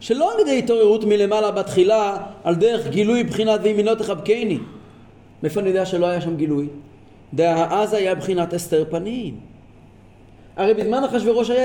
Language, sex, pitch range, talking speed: Hebrew, male, 145-235 Hz, 150 wpm